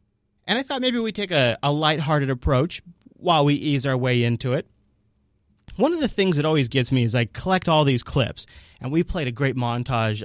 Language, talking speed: English, 215 wpm